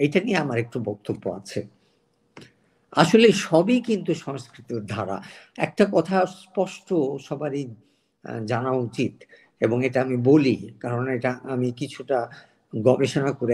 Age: 50-69